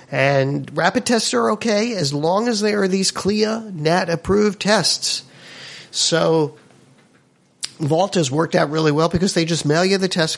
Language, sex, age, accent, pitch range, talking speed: English, male, 50-69, American, 130-170 Hz, 160 wpm